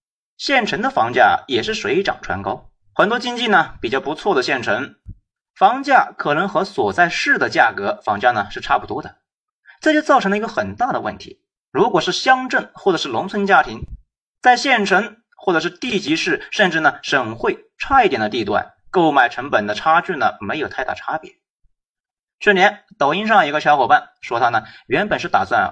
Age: 30-49